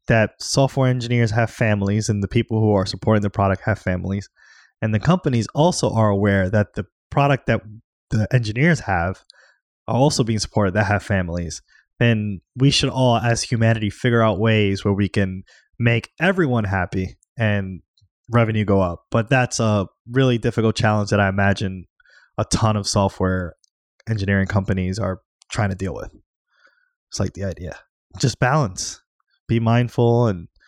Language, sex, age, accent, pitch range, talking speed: English, male, 20-39, American, 100-125 Hz, 160 wpm